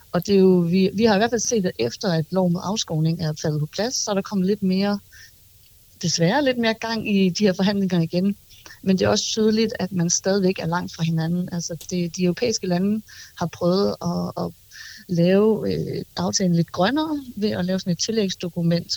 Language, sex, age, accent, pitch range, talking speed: Danish, female, 30-49, native, 165-195 Hz, 215 wpm